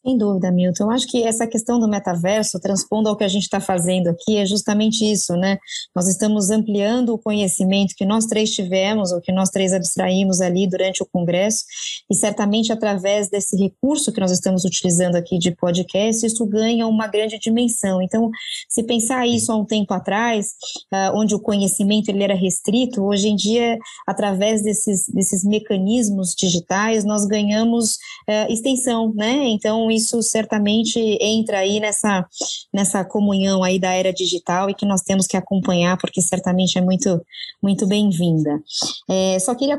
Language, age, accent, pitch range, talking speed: Portuguese, 20-39, Brazilian, 190-220 Hz, 165 wpm